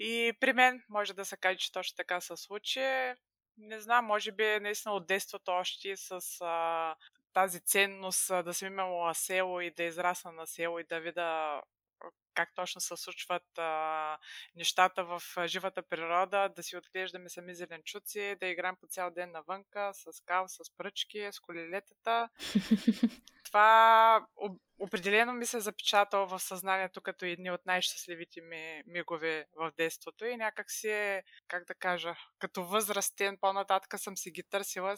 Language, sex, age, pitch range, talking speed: Bulgarian, female, 20-39, 170-200 Hz, 160 wpm